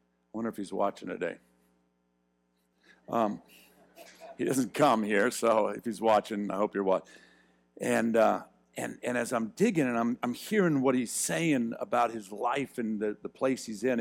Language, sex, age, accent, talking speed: English, male, 50-69, American, 180 wpm